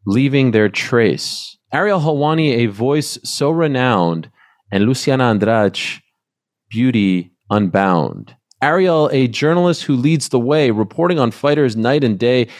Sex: male